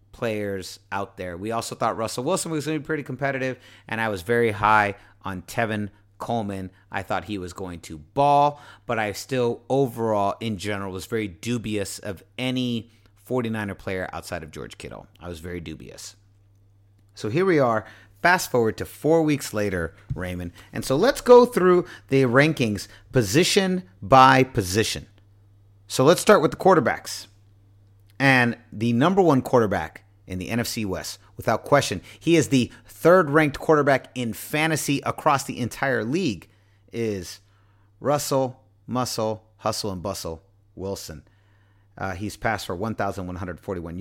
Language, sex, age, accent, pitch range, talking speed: English, male, 30-49, American, 100-130 Hz, 150 wpm